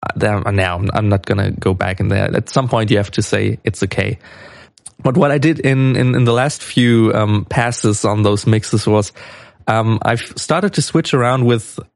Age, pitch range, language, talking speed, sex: 20-39, 105-130 Hz, English, 200 wpm, male